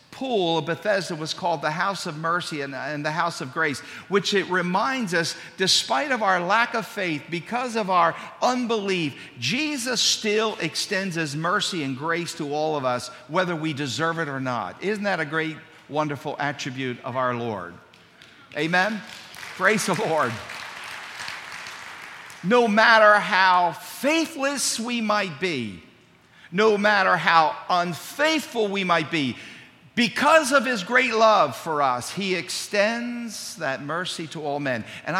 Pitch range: 150-200 Hz